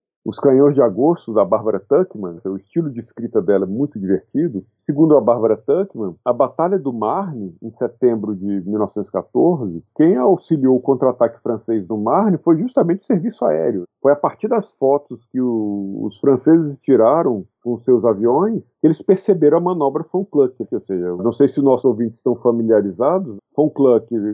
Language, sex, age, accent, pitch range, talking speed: Portuguese, male, 50-69, Brazilian, 115-150 Hz, 175 wpm